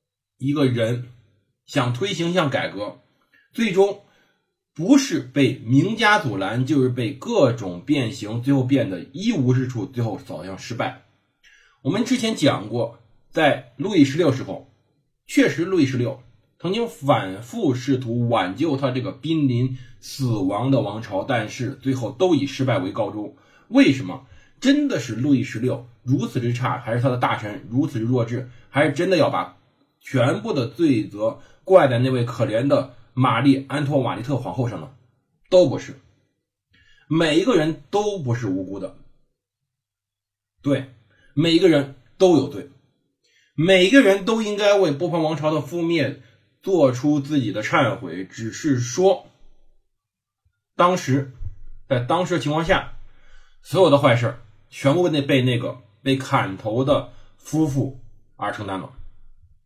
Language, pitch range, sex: Chinese, 115-150 Hz, male